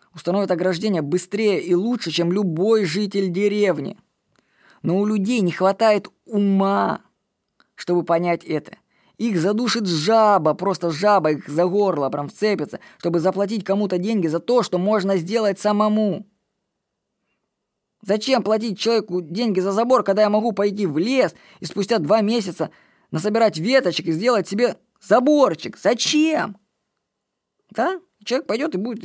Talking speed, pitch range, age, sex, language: 135 wpm, 180-220 Hz, 20-39, female, Russian